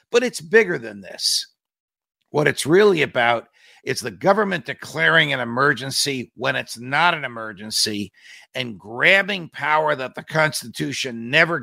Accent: American